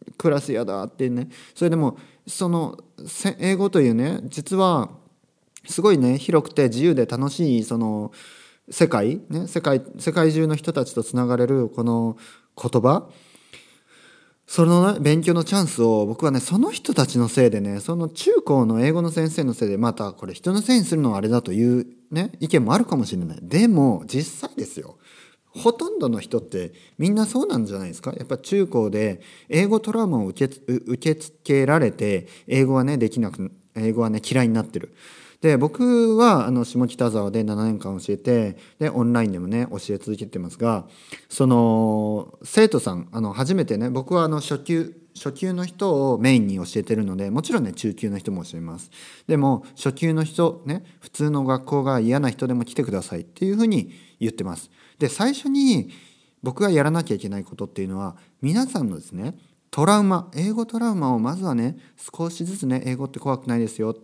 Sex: male